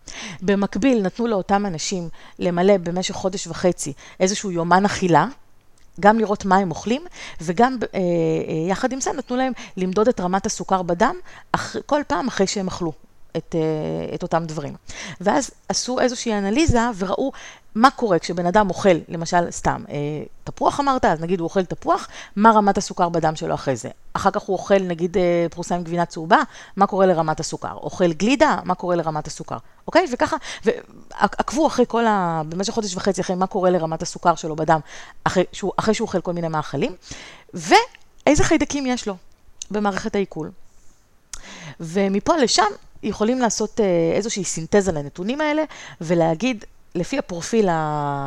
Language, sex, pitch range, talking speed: Hebrew, female, 170-220 Hz, 145 wpm